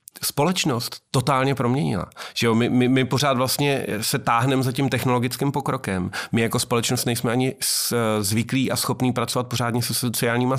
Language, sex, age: Czech, male, 40-59